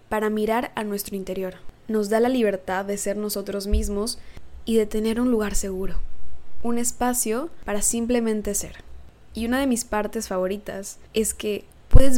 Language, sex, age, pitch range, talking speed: English, female, 10-29, 205-245 Hz, 165 wpm